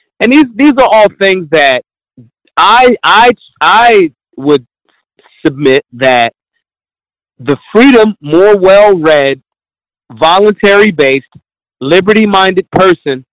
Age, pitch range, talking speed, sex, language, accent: 40-59, 125-180 Hz, 90 wpm, male, English, American